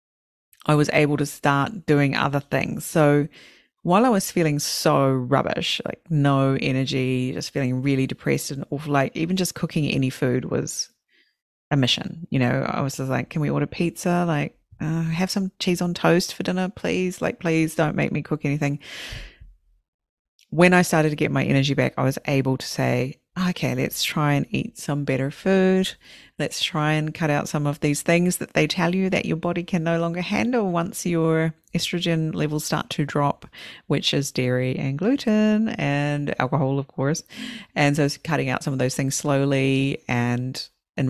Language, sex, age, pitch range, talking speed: English, female, 30-49, 135-170 Hz, 185 wpm